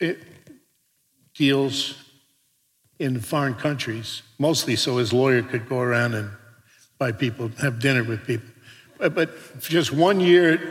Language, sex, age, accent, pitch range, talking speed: English, male, 60-79, American, 125-170 Hz, 130 wpm